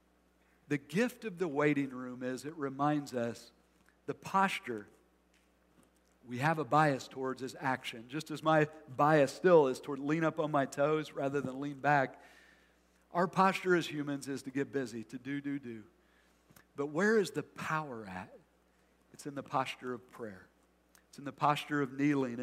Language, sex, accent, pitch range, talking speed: English, male, American, 125-170 Hz, 175 wpm